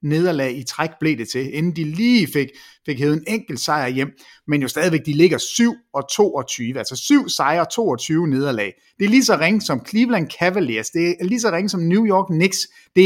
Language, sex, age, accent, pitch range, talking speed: English, male, 30-49, Danish, 135-195 Hz, 200 wpm